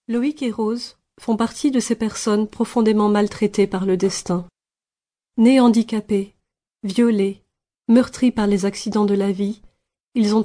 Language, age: French, 30-49